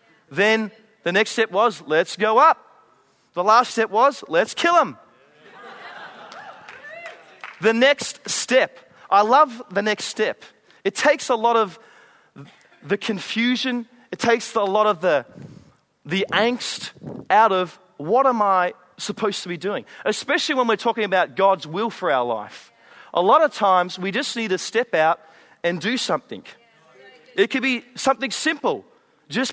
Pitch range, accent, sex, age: 205-255 Hz, Australian, male, 30-49